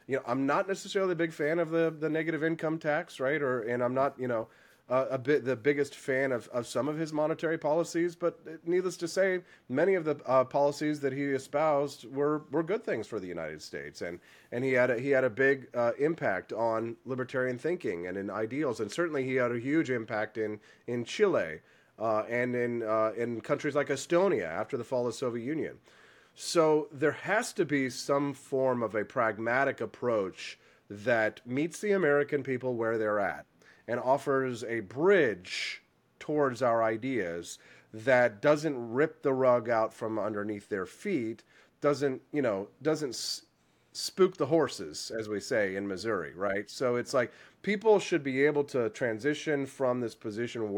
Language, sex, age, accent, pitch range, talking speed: English, male, 30-49, American, 120-150 Hz, 185 wpm